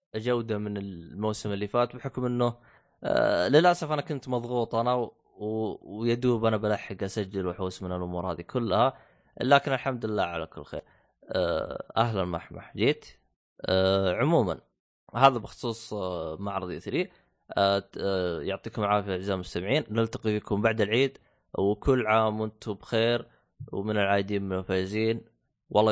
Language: Arabic